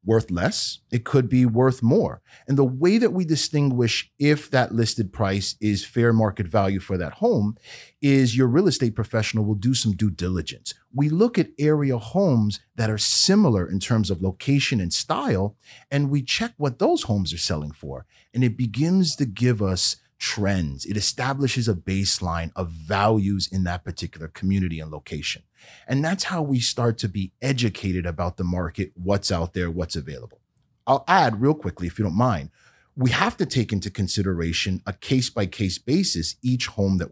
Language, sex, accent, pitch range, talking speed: English, male, American, 95-135 Hz, 185 wpm